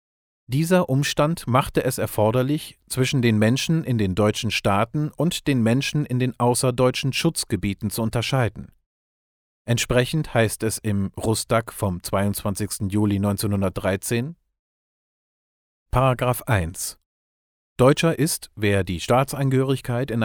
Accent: German